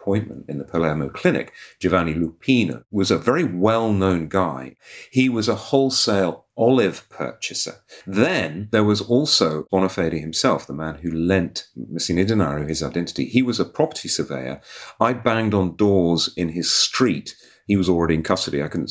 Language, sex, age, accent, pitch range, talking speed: English, male, 40-59, British, 80-115 Hz, 165 wpm